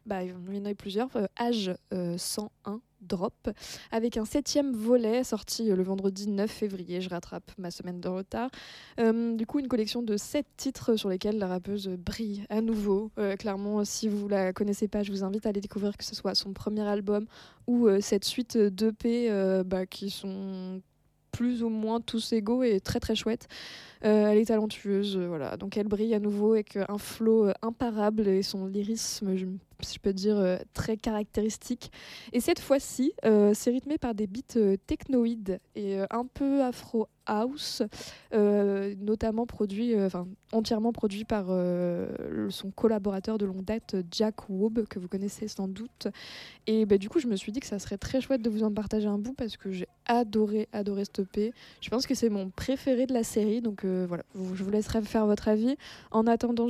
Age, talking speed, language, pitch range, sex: 20-39, 195 wpm, English, 200-230 Hz, female